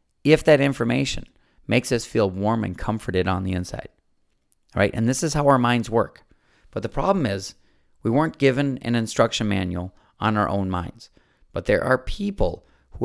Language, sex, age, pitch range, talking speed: English, male, 40-59, 100-140 Hz, 180 wpm